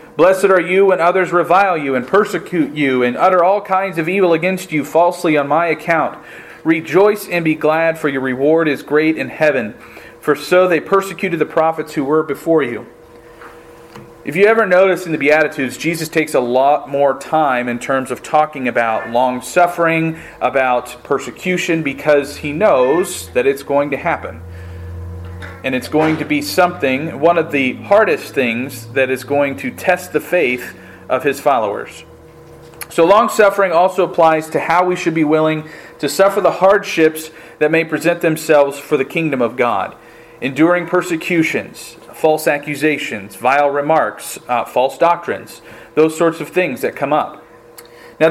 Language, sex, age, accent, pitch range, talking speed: English, male, 40-59, American, 140-175 Hz, 165 wpm